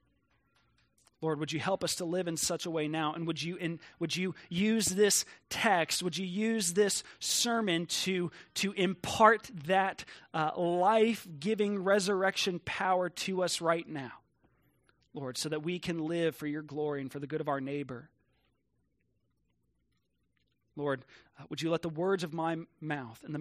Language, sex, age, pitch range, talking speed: English, male, 30-49, 150-215 Hz, 170 wpm